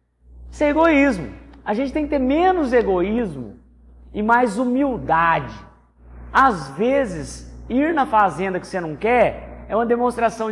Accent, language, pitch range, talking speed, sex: Brazilian, Portuguese, 170-275 Hz, 145 wpm, male